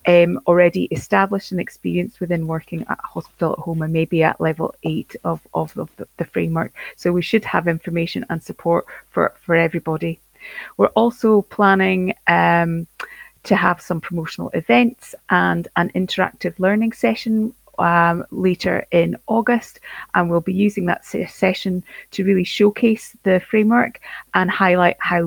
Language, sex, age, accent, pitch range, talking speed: English, female, 30-49, British, 170-195 Hz, 150 wpm